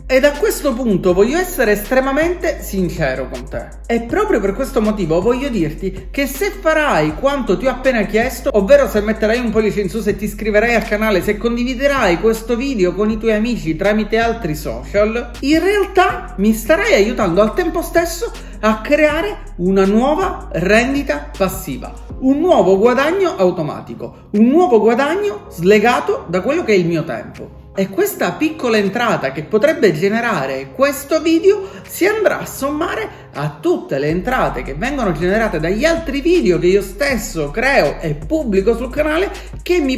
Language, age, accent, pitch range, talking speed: Italian, 40-59, native, 195-280 Hz, 165 wpm